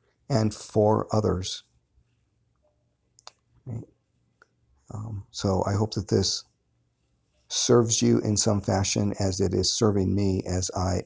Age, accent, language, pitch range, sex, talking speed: 50-69, American, English, 90-110 Hz, male, 115 wpm